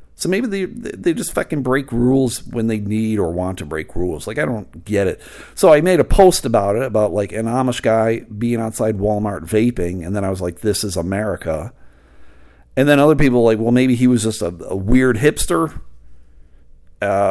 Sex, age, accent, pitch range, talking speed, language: male, 50-69, American, 100-155 Hz, 210 wpm, English